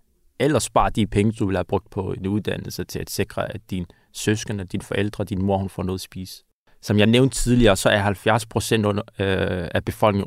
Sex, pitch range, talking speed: male, 100-115 Hz, 215 wpm